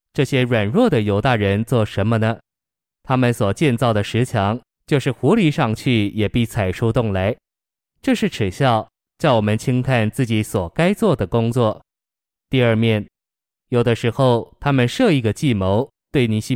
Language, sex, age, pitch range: Chinese, male, 20-39, 105-125 Hz